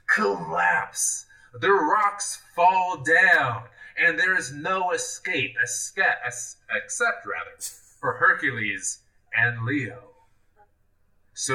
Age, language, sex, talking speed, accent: 20-39, English, male, 95 wpm, American